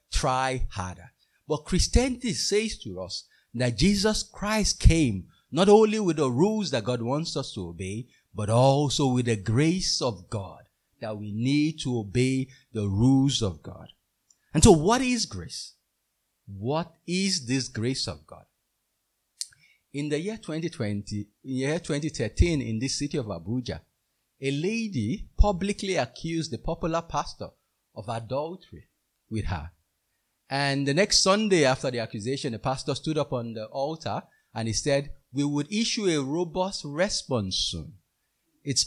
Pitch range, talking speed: 115-175 Hz, 150 wpm